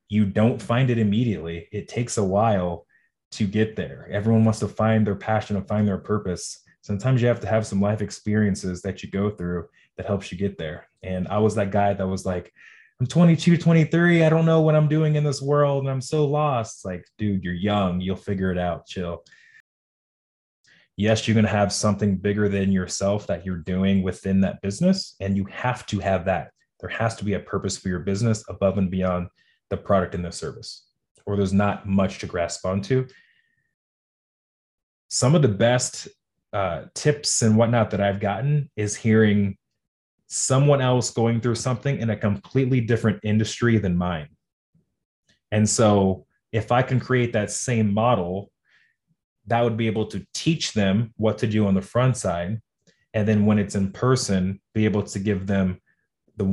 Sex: male